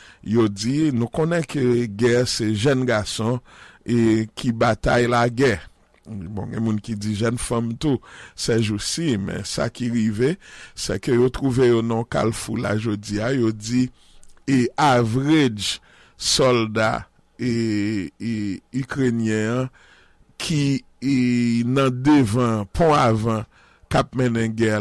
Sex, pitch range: male, 115-135 Hz